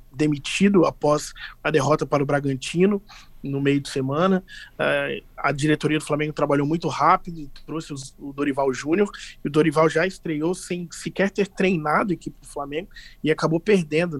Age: 20-39